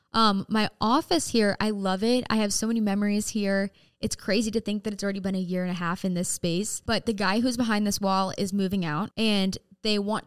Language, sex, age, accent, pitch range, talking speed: English, female, 10-29, American, 185-215 Hz, 245 wpm